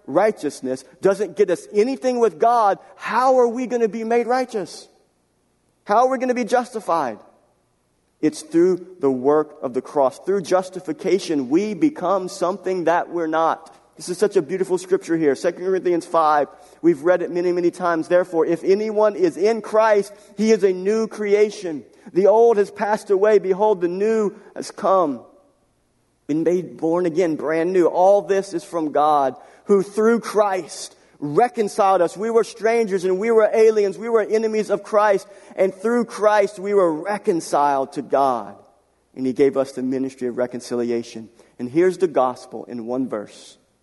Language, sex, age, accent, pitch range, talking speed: English, male, 50-69, American, 160-215 Hz, 170 wpm